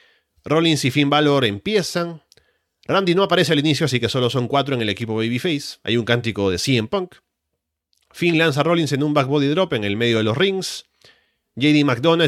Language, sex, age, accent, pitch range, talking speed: Spanish, male, 30-49, Argentinian, 115-160 Hz, 200 wpm